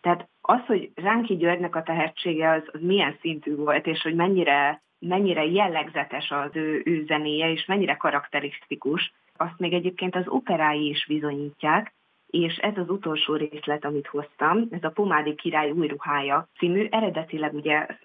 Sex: female